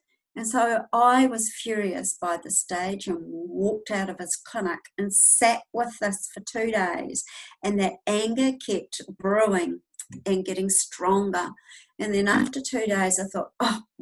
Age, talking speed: 50-69, 160 wpm